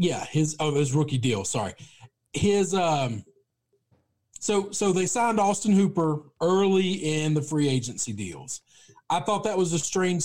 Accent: American